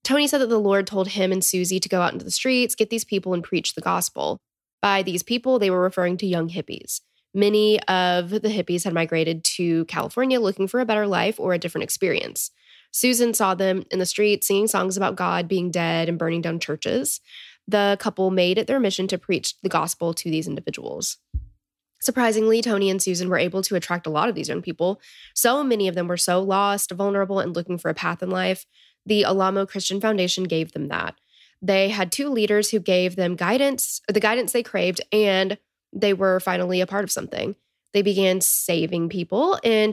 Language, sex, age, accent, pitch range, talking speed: English, female, 10-29, American, 180-210 Hz, 205 wpm